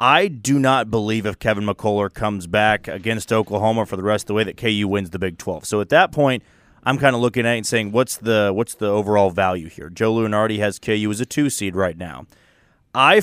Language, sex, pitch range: English, male, 105-140 Hz